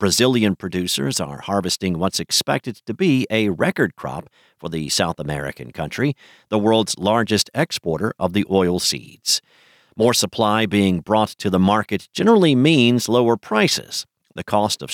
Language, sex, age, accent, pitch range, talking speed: English, male, 50-69, American, 95-120 Hz, 155 wpm